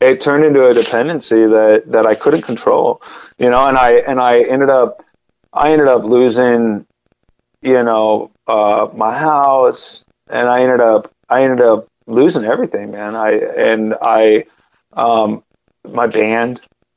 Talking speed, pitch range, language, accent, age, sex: 150 wpm, 105-125 Hz, English, American, 30-49, male